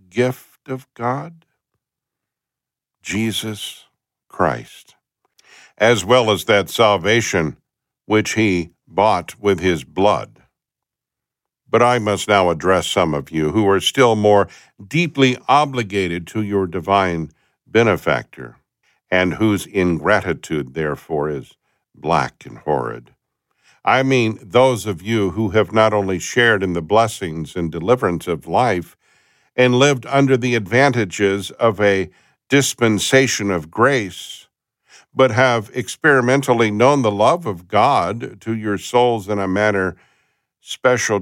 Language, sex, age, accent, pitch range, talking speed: English, male, 50-69, American, 95-120 Hz, 120 wpm